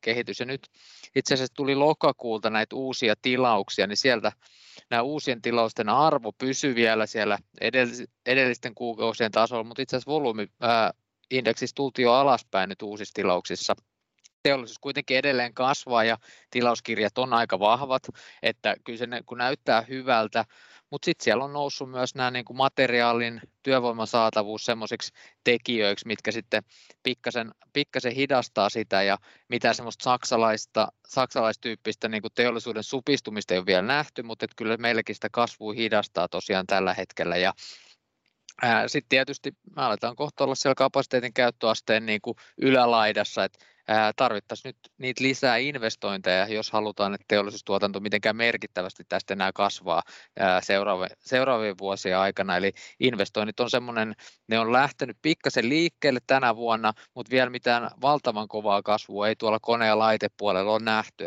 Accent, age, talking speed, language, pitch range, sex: native, 20-39, 140 wpm, Finnish, 105-130 Hz, male